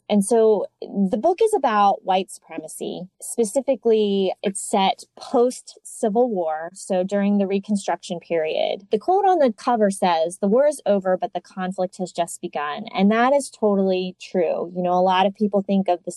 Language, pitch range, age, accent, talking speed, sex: English, 185-235 Hz, 20-39, American, 180 wpm, female